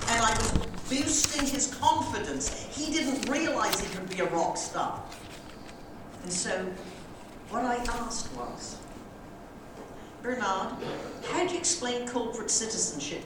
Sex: female